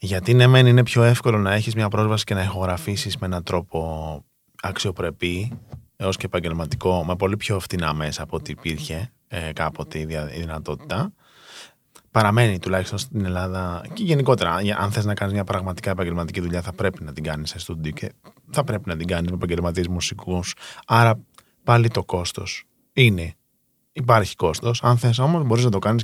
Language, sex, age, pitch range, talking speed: Greek, male, 20-39, 85-115 Hz, 170 wpm